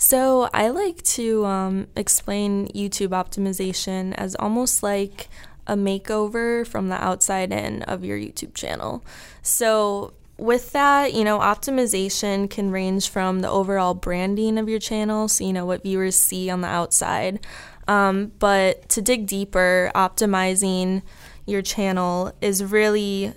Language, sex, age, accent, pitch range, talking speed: English, female, 20-39, American, 185-210 Hz, 140 wpm